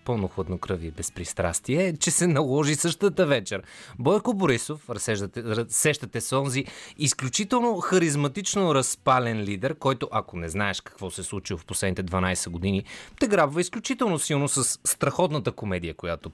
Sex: male